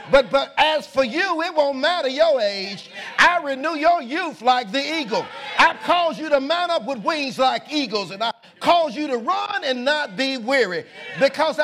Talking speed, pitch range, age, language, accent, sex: 195 wpm, 235-325 Hz, 50-69, English, American, male